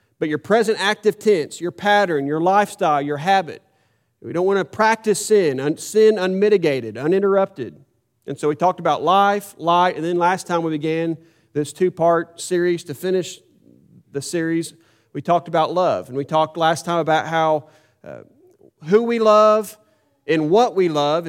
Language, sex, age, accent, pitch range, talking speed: English, male, 40-59, American, 155-195 Hz, 170 wpm